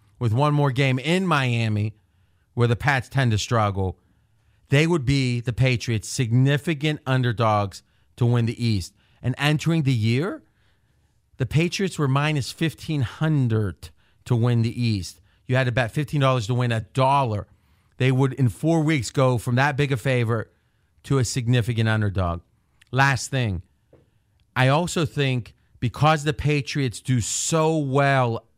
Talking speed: 150 wpm